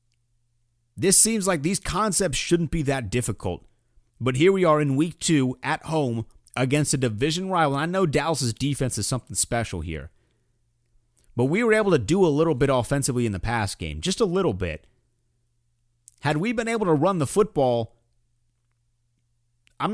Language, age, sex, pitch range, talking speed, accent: English, 30-49, male, 110-155 Hz, 170 wpm, American